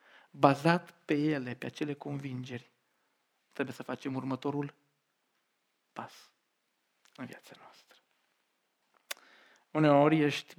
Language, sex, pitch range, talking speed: Romanian, male, 130-170 Hz, 90 wpm